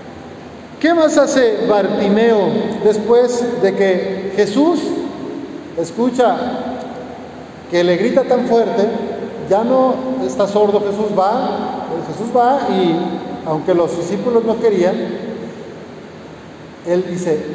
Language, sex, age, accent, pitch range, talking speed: Spanish, male, 40-59, Mexican, 180-230 Hz, 105 wpm